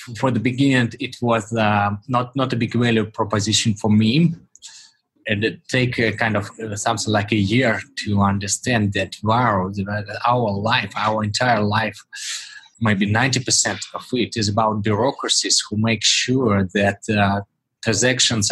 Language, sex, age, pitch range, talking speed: English, male, 20-39, 100-120 Hz, 155 wpm